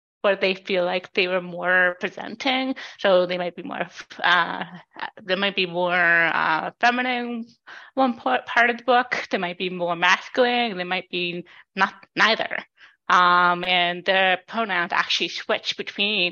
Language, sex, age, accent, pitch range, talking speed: English, female, 20-39, American, 180-235 Hz, 155 wpm